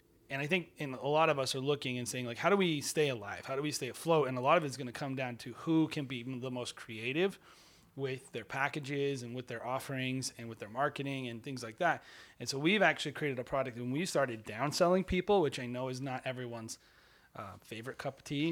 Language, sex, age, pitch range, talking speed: English, male, 30-49, 125-160 Hz, 255 wpm